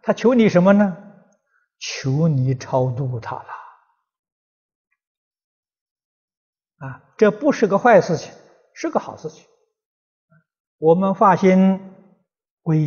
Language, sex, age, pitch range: Chinese, male, 50-69, 145-215 Hz